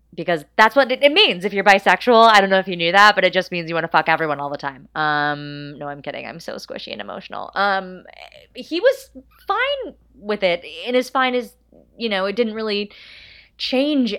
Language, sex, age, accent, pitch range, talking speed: English, female, 20-39, American, 145-200 Hz, 220 wpm